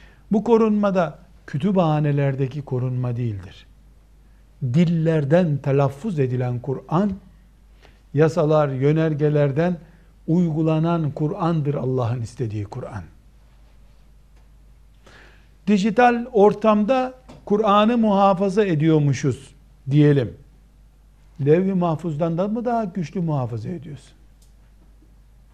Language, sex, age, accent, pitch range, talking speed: Turkish, male, 60-79, native, 145-210 Hz, 70 wpm